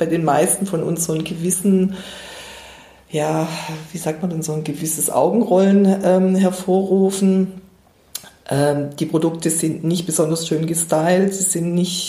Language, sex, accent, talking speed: German, female, German, 150 wpm